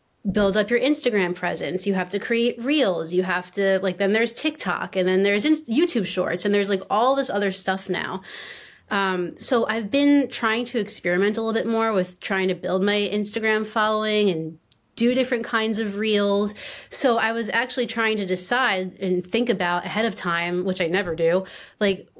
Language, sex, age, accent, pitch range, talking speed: English, female, 30-49, American, 185-225 Hz, 195 wpm